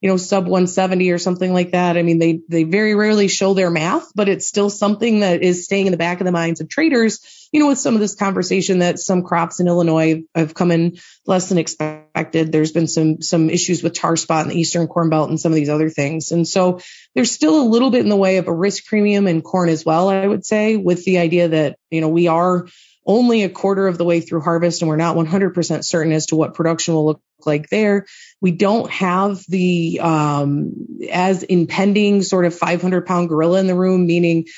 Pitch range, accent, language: 165-195 Hz, American, English